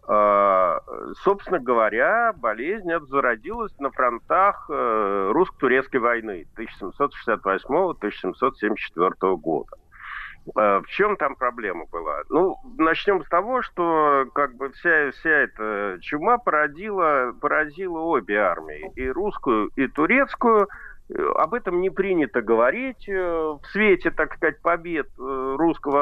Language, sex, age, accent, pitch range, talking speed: Russian, male, 50-69, native, 135-215 Hz, 105 wpm